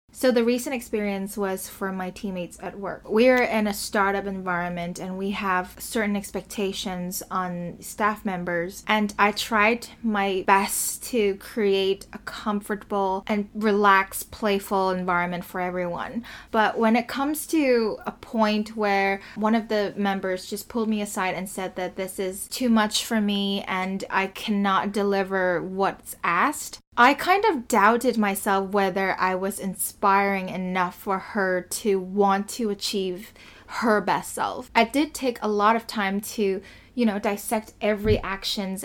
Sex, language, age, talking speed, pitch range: female, English, 20-39, 155 wpm, 190-225 Hz